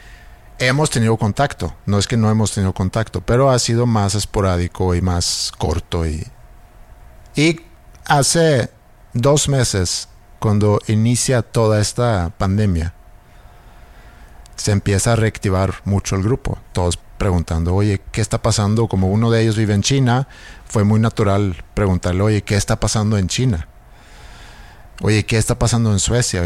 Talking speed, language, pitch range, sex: 145 wpm, Spanish, 95-120 Hz, male